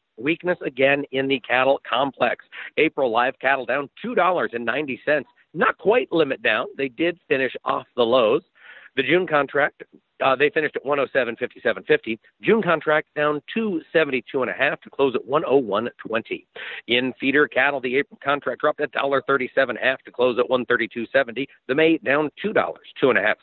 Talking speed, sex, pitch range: 150 wpm, male, 130-185 Hz